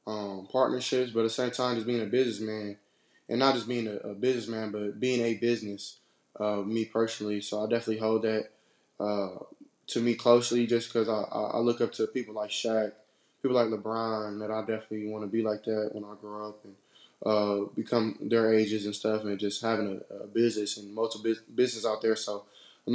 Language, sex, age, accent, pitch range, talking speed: English, male, 20-39, American, 105-115 Hz, 205 wpm